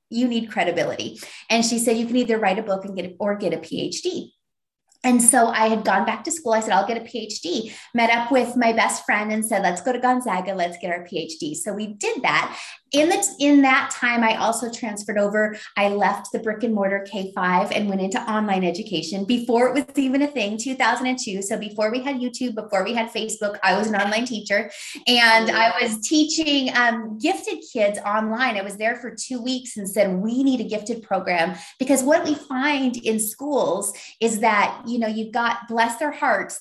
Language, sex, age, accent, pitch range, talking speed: English, female, 20-39, American, 200-250 Hz, 210 wpm